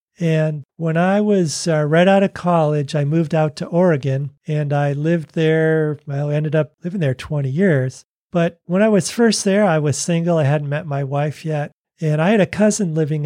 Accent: American